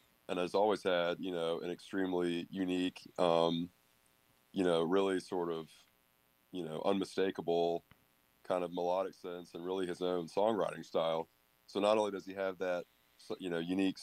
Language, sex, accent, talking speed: English, male, American, 165 wpm